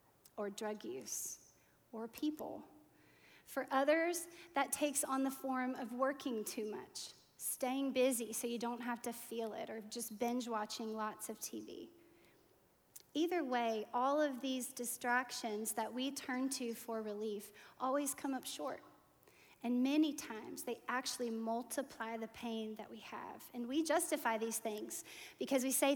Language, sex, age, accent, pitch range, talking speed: English, female, 30-49, American, 225-280 Hz, 155 wpm